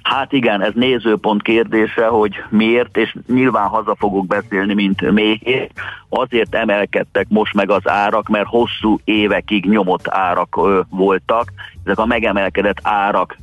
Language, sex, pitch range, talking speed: Hungarian, male, 95-110 Hz, 135 wpm